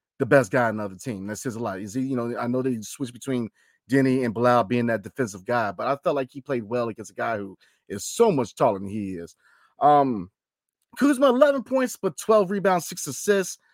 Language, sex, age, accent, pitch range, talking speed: English, male, 30-49, American, 115-160 Hz, 230 wpm